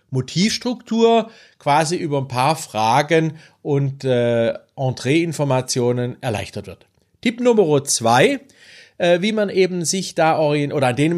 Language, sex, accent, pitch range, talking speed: German, male, German, 135-185 Hz, 135 wpm